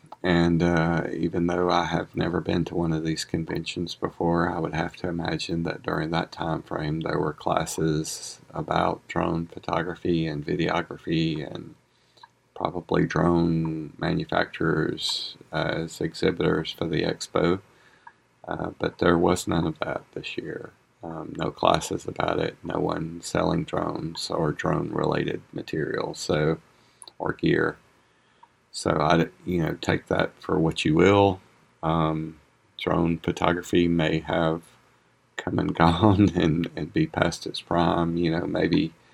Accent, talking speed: American, 140 wpm